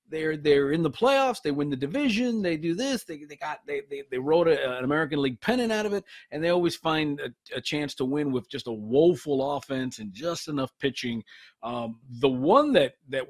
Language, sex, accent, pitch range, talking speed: English, male, American, 135-195 Hz, 225 wpm